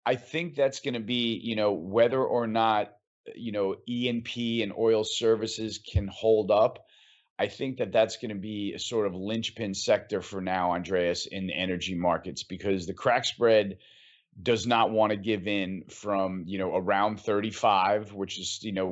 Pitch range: 100-115 Hz